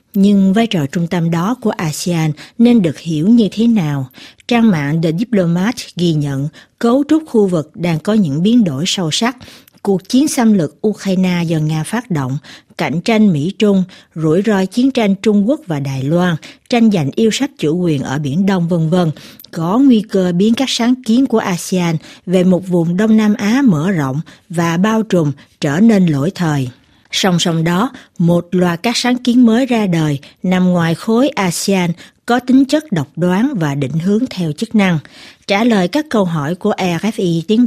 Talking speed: 190 wpm